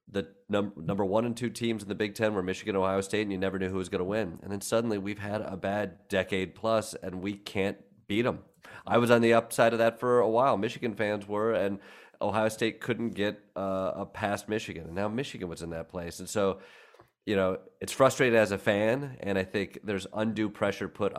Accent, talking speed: American, 230 wpm